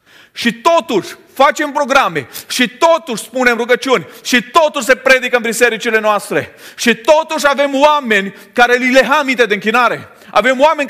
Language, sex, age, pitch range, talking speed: Romanian, male, 40-59, 200-260 Hz, 145 wpm